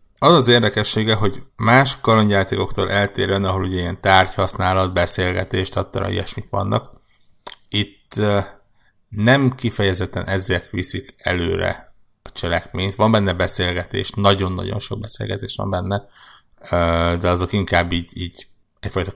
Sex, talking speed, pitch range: male, 120 wpm, 90-105 Hz